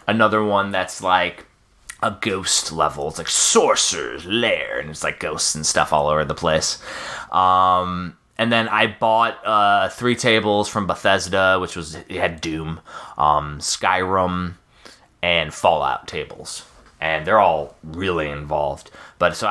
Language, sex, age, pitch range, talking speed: English, male, 20-39, 90-115 Hz, 150 wpm